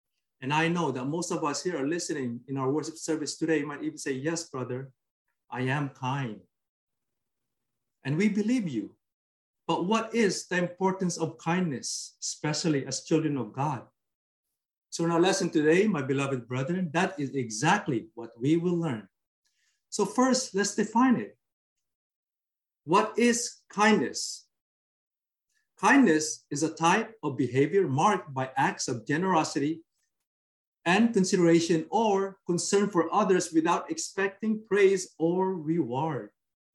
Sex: male